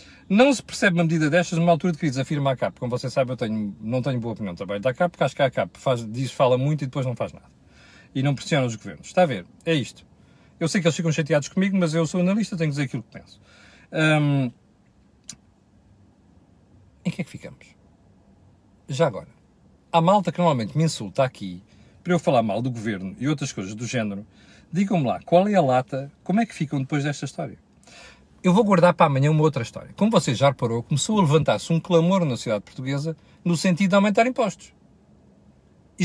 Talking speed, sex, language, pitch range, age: 215 wpm, male, Portuguese, 110-180 Hz, 50-69